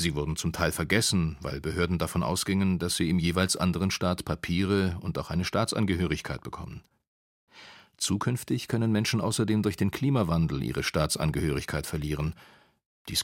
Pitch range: 85-110 Hz